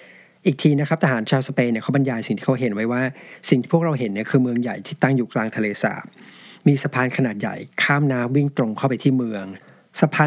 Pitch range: 120-145 Hz